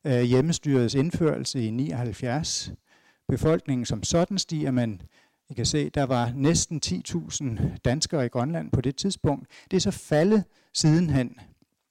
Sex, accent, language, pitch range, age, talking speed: male, native, Danish, 125-160 Hz, 60-79, 135 wpm